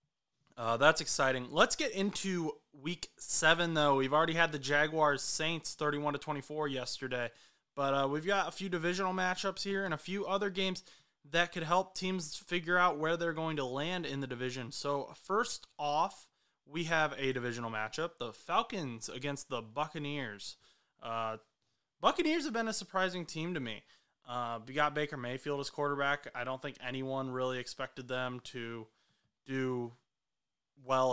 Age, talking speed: 20-39, 165 wpm